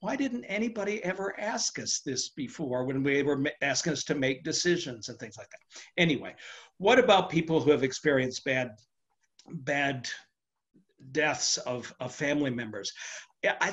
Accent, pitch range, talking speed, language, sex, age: American, 135-165 Hz, 155 wpm, English, male, 50-69